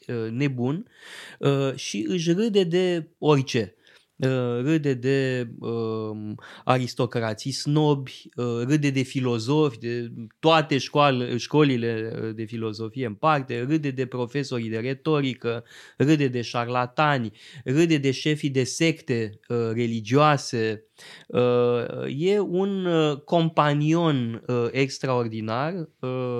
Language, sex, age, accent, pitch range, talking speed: Romanian, male, 20-39, native, 120-155 Hz, 90 wpm